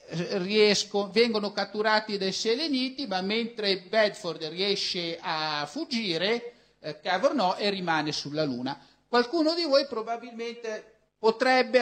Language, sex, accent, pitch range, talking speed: Italian, male, native, 180-235 Hz, 110 wpm